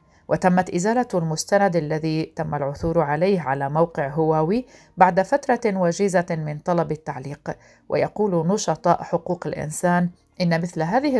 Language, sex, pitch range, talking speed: Arabic, female, 150-190 Hz, 125 wpm